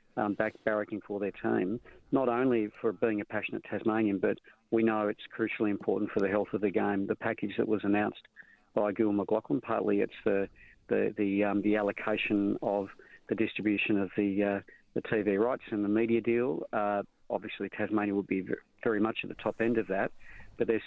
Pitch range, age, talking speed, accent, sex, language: 100-110 Hz, 40-59, 200 wpm, Australian, male, English